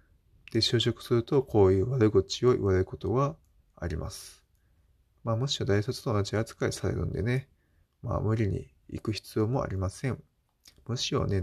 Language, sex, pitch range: Japanese, male, 100-125 Hz